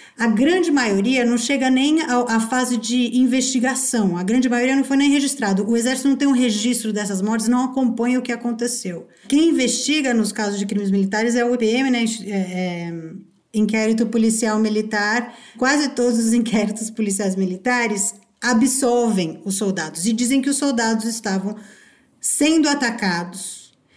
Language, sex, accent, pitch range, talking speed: Portuguese, female, Brazilian, 215-250 Hz, 150 wpm